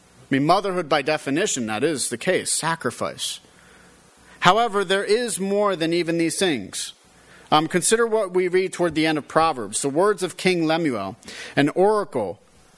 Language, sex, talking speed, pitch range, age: English, male, 165 wpm, 140-180 Hz, 40-59